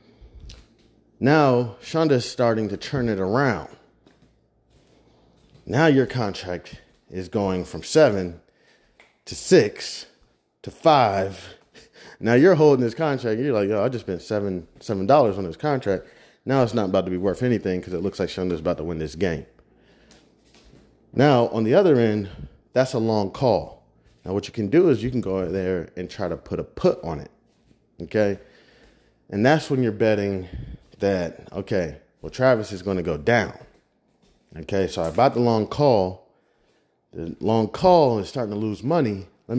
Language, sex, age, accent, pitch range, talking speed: English, male, 30-49, American, 90-125 Hz, 165 wpm